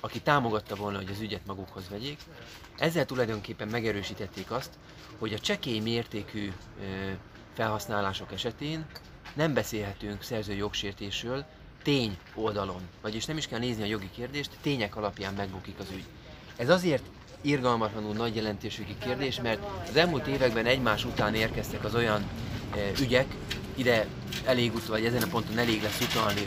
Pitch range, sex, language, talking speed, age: 105-120 Hz, male, Hungarian, 140 wpm, 30-49